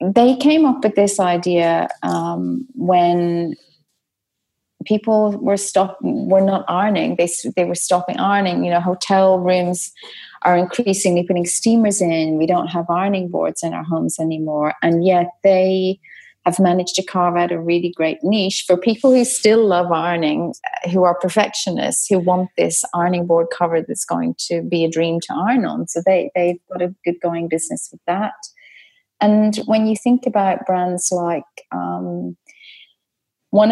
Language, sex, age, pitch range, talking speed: English, female, 30-49, 170-195 Hz, 165 wpm